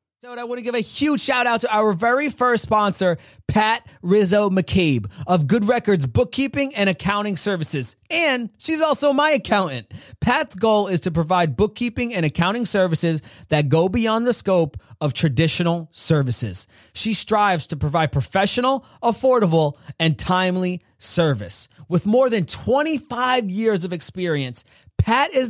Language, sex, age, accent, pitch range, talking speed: English, male, 30-49, American, 150-220 Hz, 150 wpm